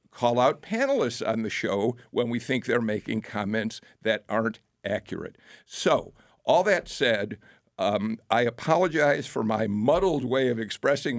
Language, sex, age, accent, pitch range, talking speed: English, male, 50-69, American, 115-165 Hz, 150 wpm